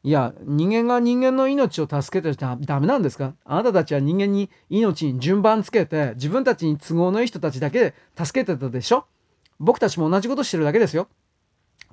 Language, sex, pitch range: Japanese, male, 145-215 Hz